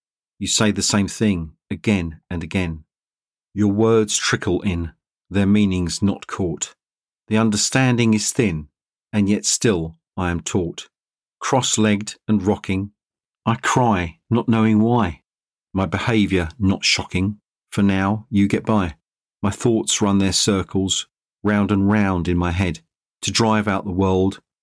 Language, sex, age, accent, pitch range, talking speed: English, male, 40-59, British, 90-110 Hz, 145 wpm